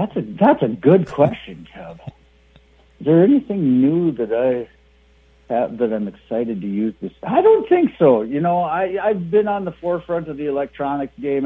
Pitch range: 105-150 Hz